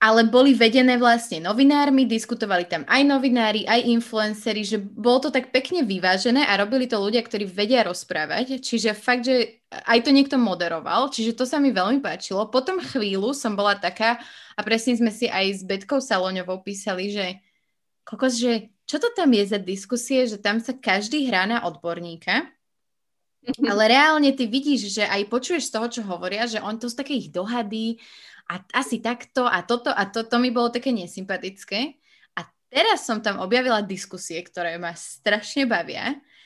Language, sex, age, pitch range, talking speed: Slovak, female, 20-39, 195-245 Hz, 175 wpm